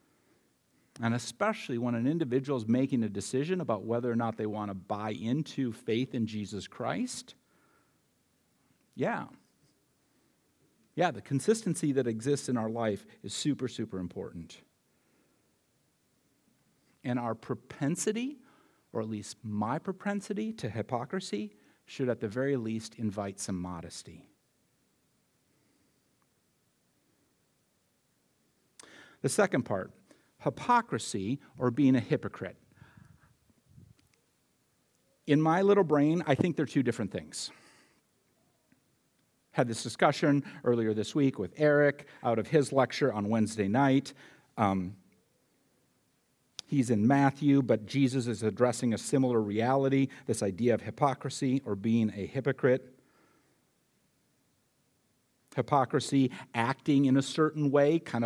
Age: 50-69